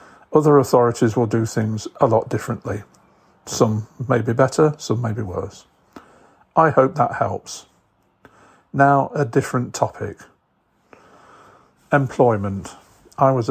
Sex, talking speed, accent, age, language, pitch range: male, 120 wpm, British, 50-69, English, 110-130 Hz